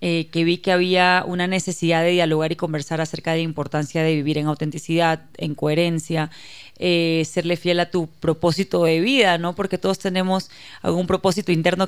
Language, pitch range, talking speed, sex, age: Spanish, 165-185 Hz, 180 wpm, female, 30-49